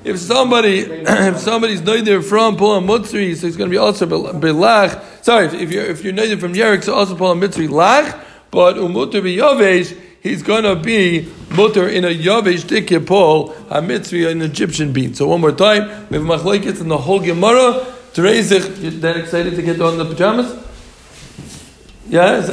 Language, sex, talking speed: English, male, 180 wpm